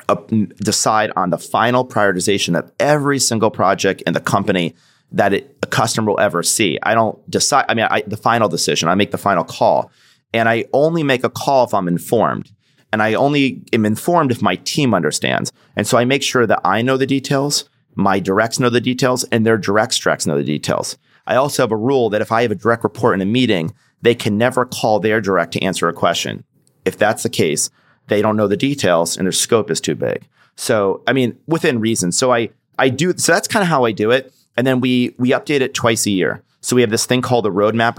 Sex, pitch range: male, 100-125 Hz